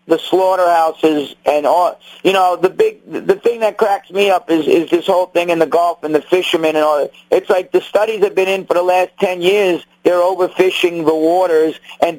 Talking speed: 210 wpm